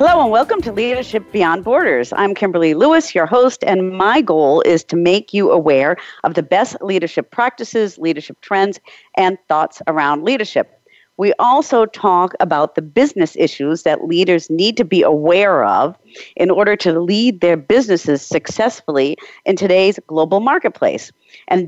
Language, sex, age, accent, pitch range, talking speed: English, female, 50-69, American, 165-220 Hz, 160 wpm